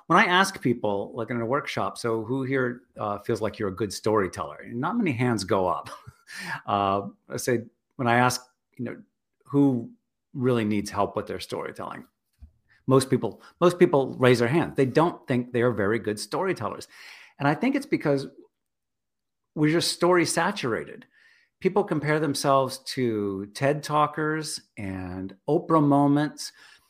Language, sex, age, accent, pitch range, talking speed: English, male, 50-69, American, 120-160 Hz, 160 wpm